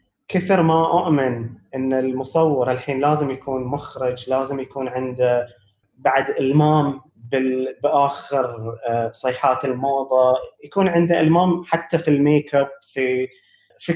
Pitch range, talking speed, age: 125-160 Hz, 115 wpm, 20-39